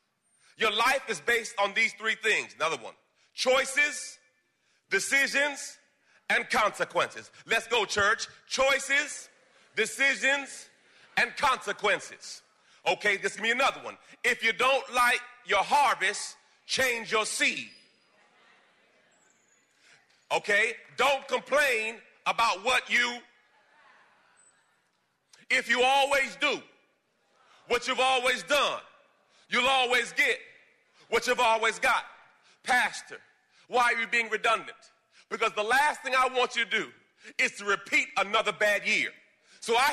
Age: 40-59